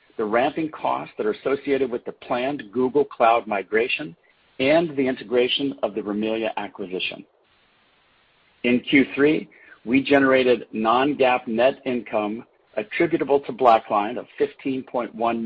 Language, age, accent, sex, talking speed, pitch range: English, 50-69, American, male, 120 wpm, 110-140 Hz